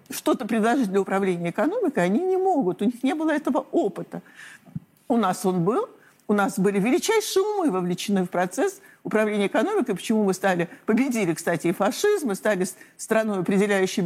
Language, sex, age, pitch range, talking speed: Russian, male, 60-79, 195-275 Hz, 165 wpm